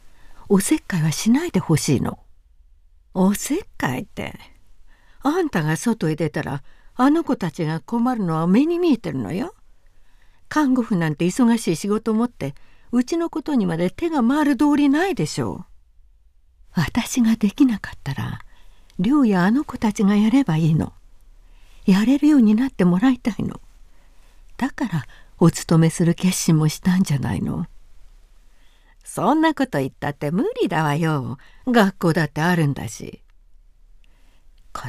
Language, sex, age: Japanese, female, 60-79